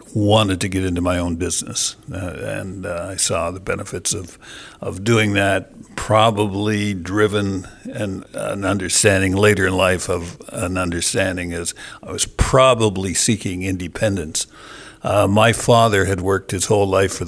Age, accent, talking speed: 60-79, American, 155 wpm